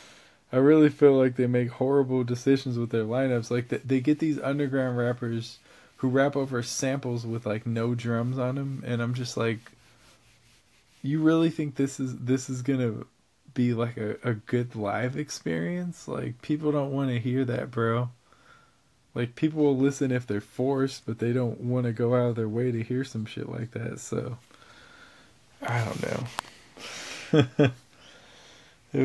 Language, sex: English, male